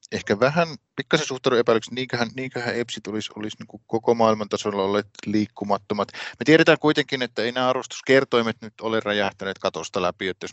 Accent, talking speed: native, 175 wpm